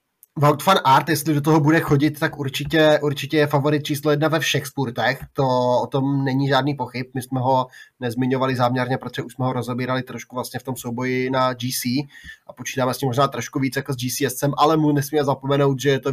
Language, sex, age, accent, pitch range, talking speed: Czech, male, 20-39, native, 130-150 Hz, 210 wpm